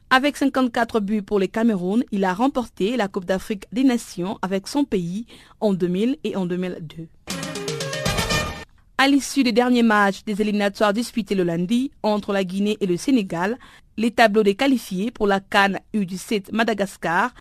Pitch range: 195-245 Hz